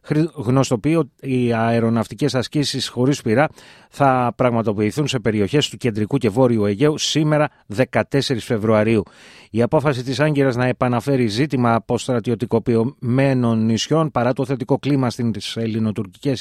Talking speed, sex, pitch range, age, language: 120 wpm, male, 110-135 Hz, 30-49, Greek